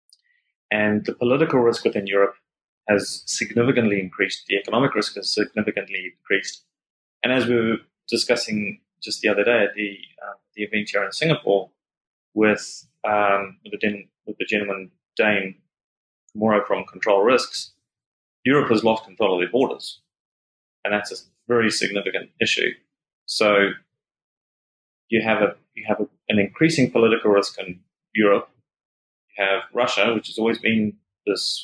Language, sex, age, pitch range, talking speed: English, male, 30-49, 100-120 Hz, 145 wpm